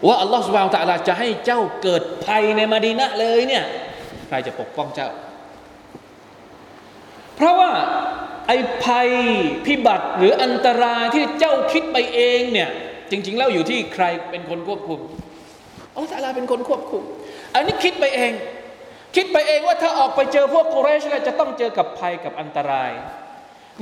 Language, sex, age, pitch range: Thai, male, 20-39, 215-300 Hz